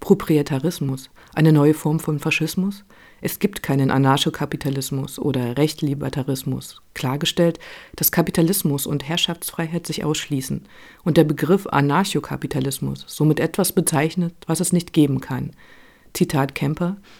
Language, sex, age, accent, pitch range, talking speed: German, female, 50-69, German, 145-175 Hz, 115 wpm